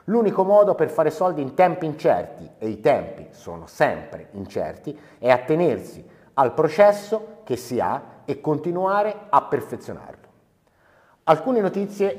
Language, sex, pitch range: Italian, male, 130-175 Hz